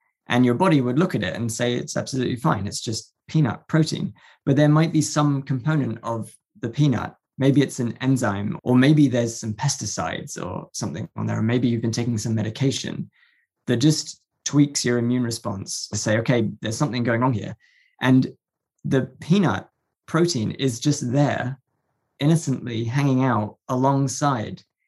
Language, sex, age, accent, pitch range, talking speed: English, male, 20-39, British, 115-135 Hz, 165 wpm